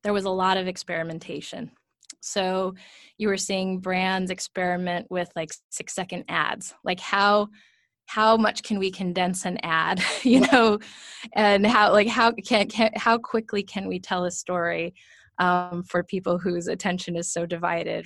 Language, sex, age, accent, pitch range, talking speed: English, female, 20-39, American, 175-205 Hz, 165 wpm